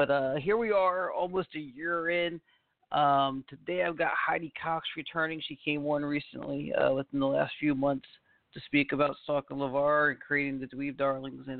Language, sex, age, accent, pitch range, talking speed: English, male, 40-59, American, 130-150 Hz, 195 wpm